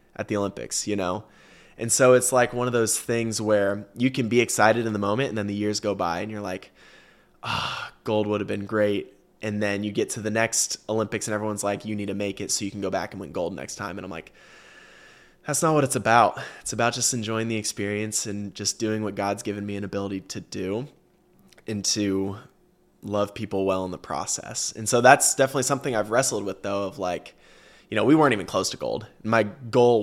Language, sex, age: English, male, 20-39